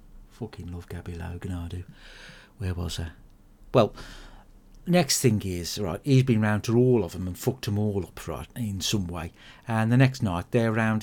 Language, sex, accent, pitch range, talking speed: English, male, British, 105-135 Hz, 195 wpm